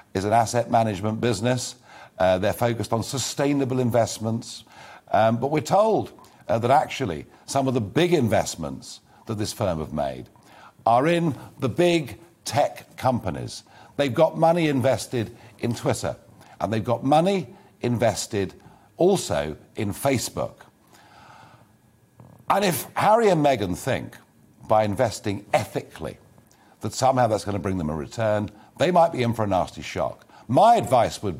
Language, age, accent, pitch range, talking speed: English, 50-69, British, 105-145 Hz, 145 wpm